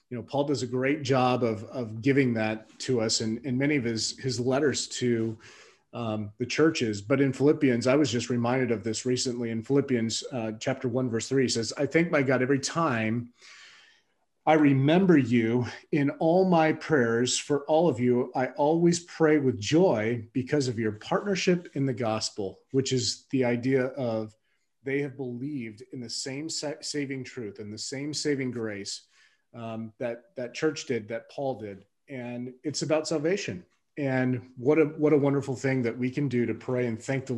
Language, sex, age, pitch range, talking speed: English, male, 30-49, 115-145 Hz, 190 wpm